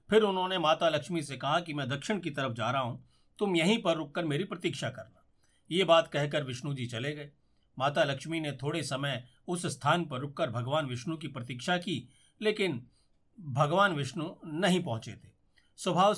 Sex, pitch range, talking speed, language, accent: male, 130-175 Hz, 180 wpm, Hindi, native